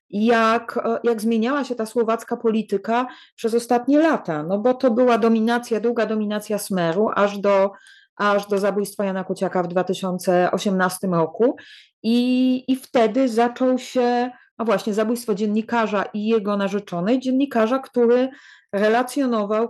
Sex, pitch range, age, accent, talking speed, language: female, 195-235 Hz, 30-49, Polish, 130 wpm, English